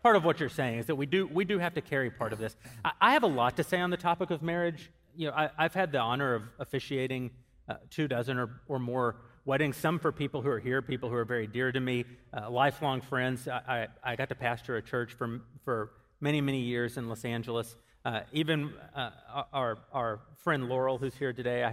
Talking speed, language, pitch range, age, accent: 245 wpm, English, 115-145 Hz, 30-49, American